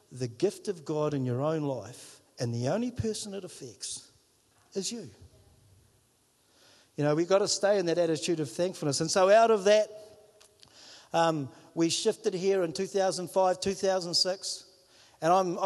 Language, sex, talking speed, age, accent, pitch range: English, male, 150 wpm, 50-69, Australian, 170-220 Hz